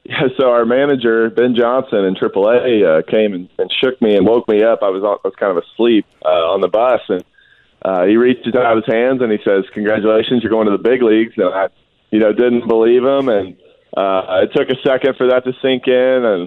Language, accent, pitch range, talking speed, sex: English, American, 105-130 Hz, 235 wpm, male